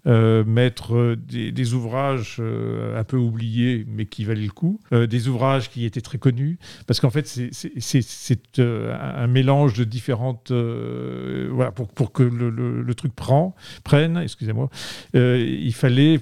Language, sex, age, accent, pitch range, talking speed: French, male, 50-69, French, 120-140 Hz, 180 wpm